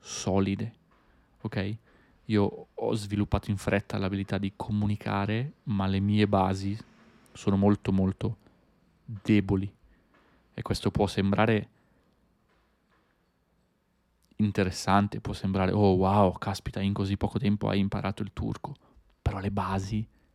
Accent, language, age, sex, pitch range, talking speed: native, Italian, 30-49, male, 100-110 Hz, 115 wpm